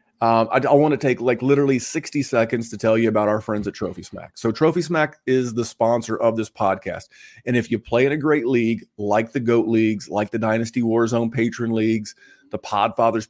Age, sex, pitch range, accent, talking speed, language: 30-49, male, 110-135 Hz, American, 210 wpm, English